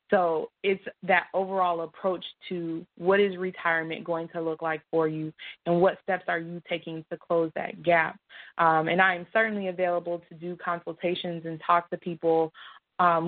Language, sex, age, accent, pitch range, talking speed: English, female, 20-39, American, 165-180 Hz, 175 wpm